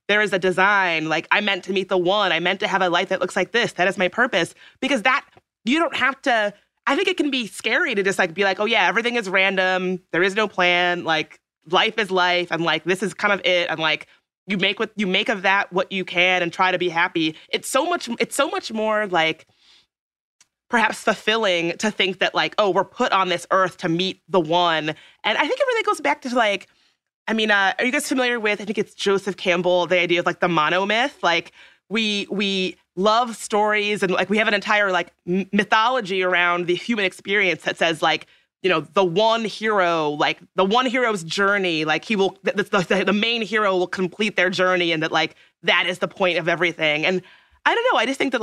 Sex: female